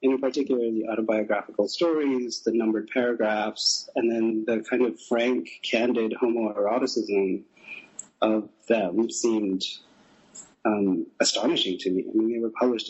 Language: English